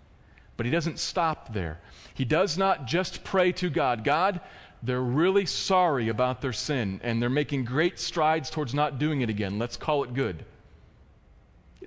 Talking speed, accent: 170 wpm, American